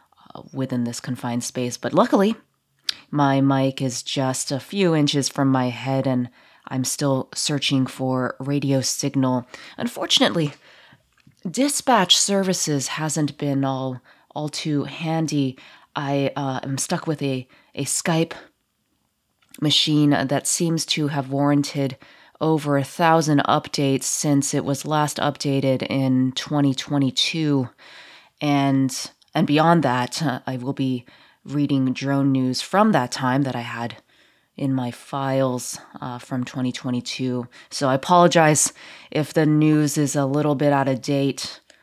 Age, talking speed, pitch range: 20-39, 135 wpm, 130-150 Hz